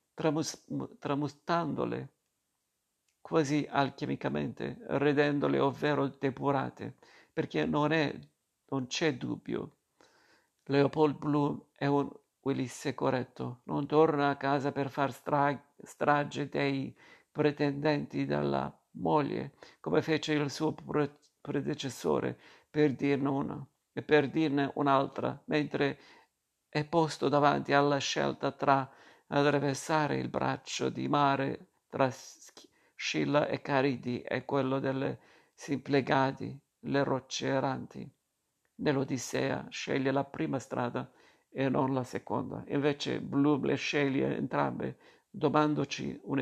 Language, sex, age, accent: Italian, male, 50-69, native